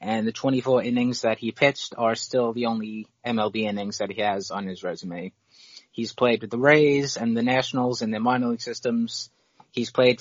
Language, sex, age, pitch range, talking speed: English, male, 20-39, 110-125 Hz, 200 wpm